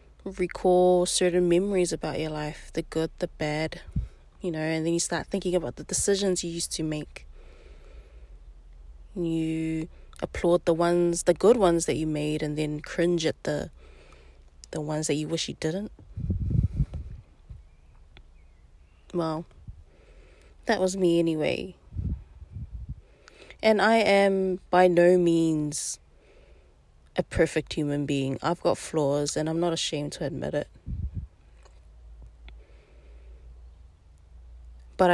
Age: 20-39